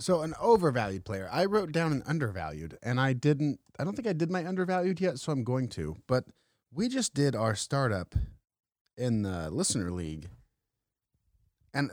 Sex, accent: male, American